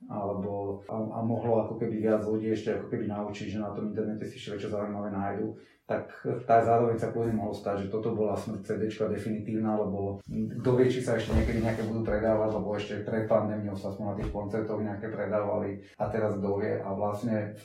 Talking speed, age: 200 wpm, 30-49